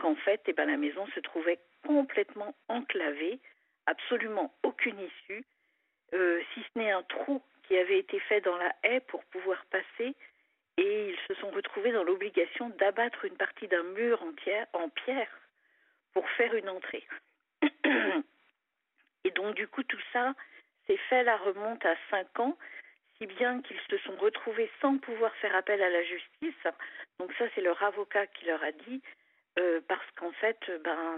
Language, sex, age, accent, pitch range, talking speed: French, female, 50-69, French, 180-275 Hz, 170 wpm